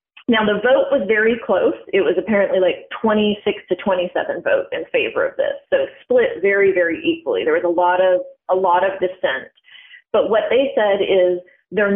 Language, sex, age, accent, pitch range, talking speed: English, female, 30-49, American, 185-245 Hz, 195 wpm